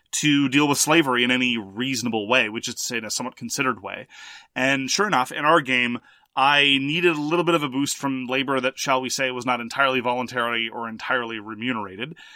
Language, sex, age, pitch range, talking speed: English, male, 30-49, 125-165 Hz, 205 wpm